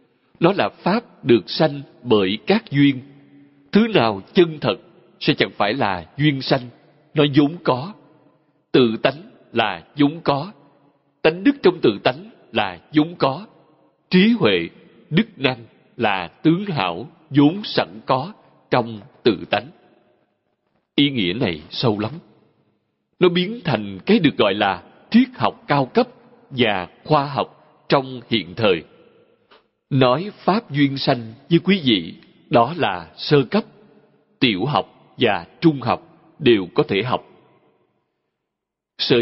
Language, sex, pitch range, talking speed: Vietnamese, male, 125-165 Hz, 140 wpm